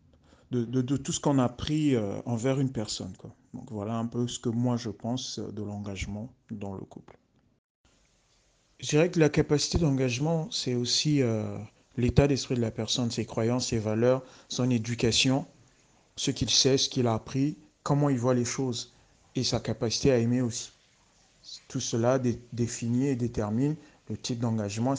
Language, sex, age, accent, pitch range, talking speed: French, male, 40-59, French, 110-130 Hz, 175 wpm